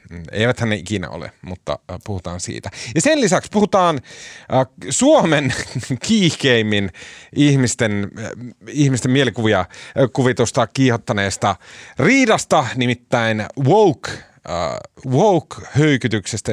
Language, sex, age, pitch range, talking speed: Finnish, male, 30-49, 100-135 Hz, 80 wpm